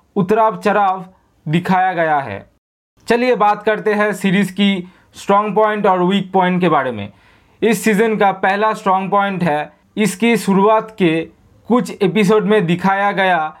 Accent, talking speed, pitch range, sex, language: native, 150 wpm, 175-215 Hz, male, Hindi